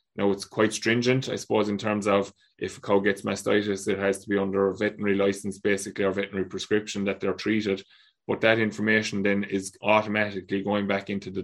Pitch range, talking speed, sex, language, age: 95-105 Hz, 205 wpm, male, English, 20-39